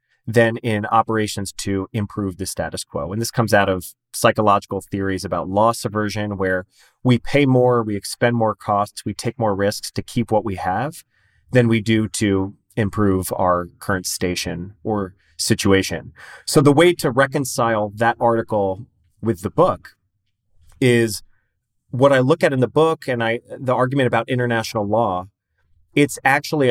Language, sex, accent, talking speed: English, male, American, 160 wpm